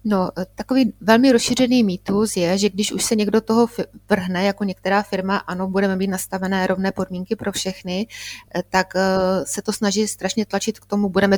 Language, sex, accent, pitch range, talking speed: Czech, female, native, 180-210 Hz, 175 wpm